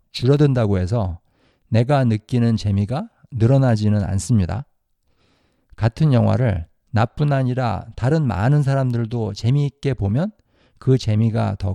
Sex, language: male, Korean